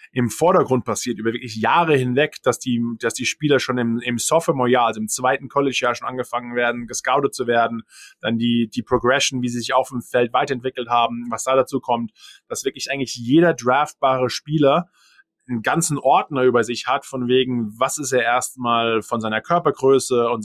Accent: German